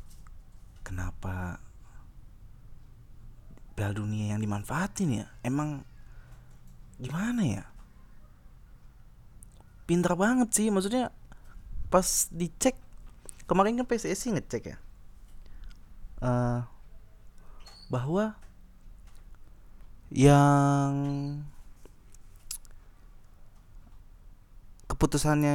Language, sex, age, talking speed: Indonesian, male, 20-39, 55 wpm